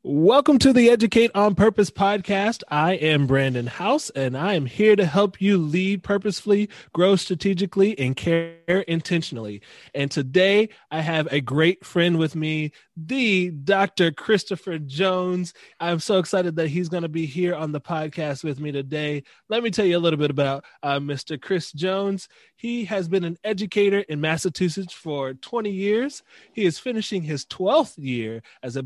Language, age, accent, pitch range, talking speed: English, 20-39, American, 145-200 Hz, 175 wpm